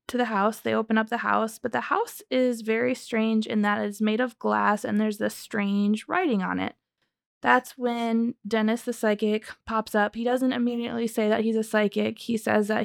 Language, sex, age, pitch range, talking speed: English, female, 20-39, 210-230 Hz, 210 wpm